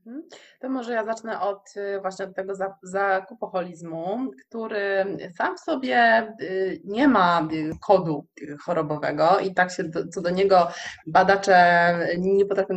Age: 20-39